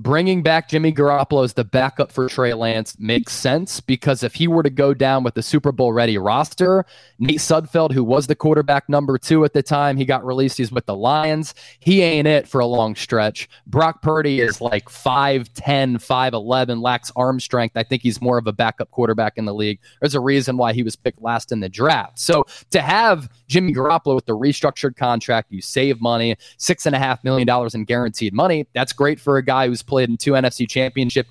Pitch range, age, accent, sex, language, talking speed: 120-155 Hz, 20-39, American, male, English, 210 wpm